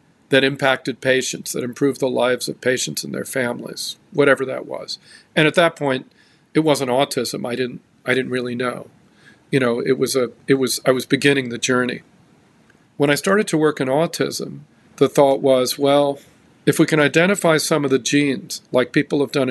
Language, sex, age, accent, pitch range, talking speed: English, male, 50-69, American, 130-155 Hz, 195 wpm